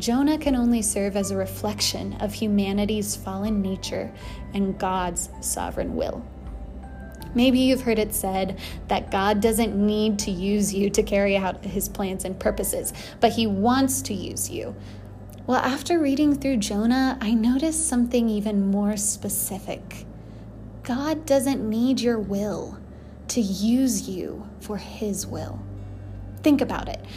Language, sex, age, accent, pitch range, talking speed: English, female, 20-39, American, 195-250 Hz, 145 wpm